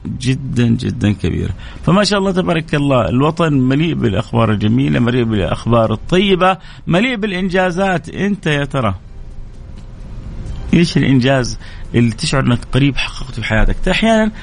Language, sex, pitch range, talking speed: Arabic, male, 105-140 Hz, 125 wpm